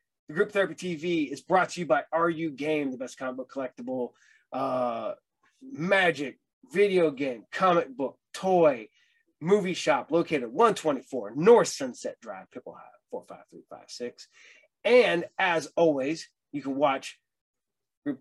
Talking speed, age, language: 135 wpm, 20-39, English